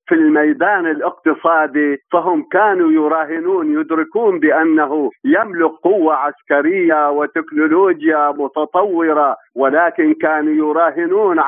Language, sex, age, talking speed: Arabic, male, 50-69, 85 wpm